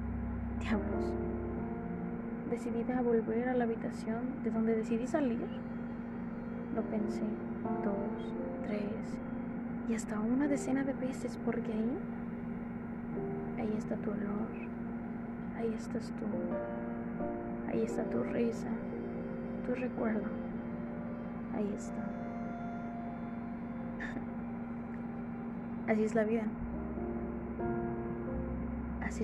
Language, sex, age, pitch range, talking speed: Spanish, female, 20-39, 215-235 Hz, 90 wpm